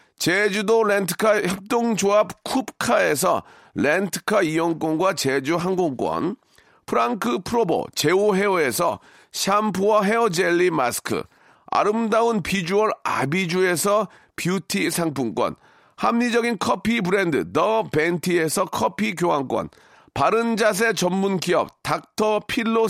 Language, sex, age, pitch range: Korean, male, 40-59, 180-225 Hz